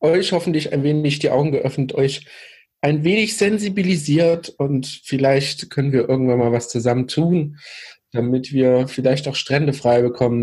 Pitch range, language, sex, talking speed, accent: 120-140 Hz, German, male, 155 wpm, German